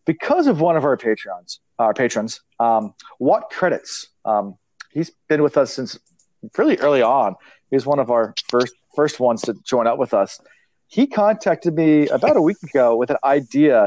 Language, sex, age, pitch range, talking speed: English, male, 40-59, 120-155 Hz, 185 wpm